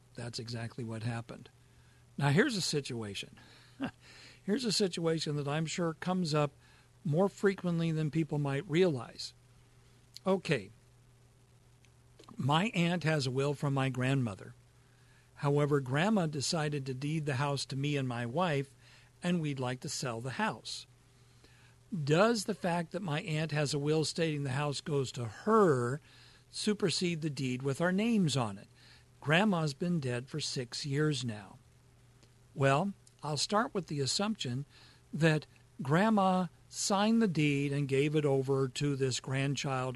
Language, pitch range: English, 125-160 Hz